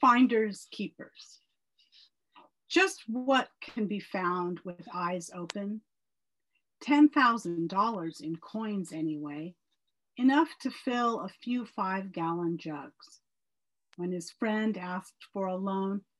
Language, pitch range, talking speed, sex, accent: English, 175-235 Hz, 105 wpm, female, American